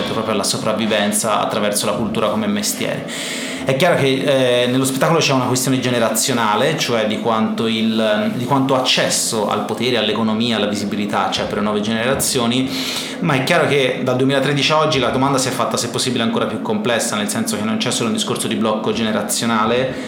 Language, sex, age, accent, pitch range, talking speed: Italian, male, 30-49, native, 115-135 Hz, 190 wpm